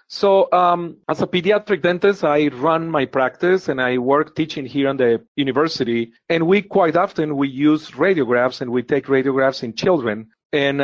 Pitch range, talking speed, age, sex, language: 135-180 Hz, 175 wpm, 40-59, male, English